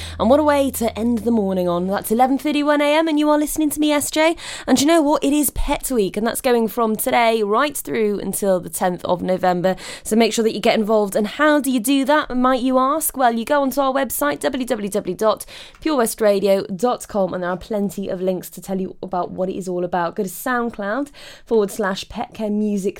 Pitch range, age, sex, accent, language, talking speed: 200-270 Hz, 20-39, female, British, English, 220 wpm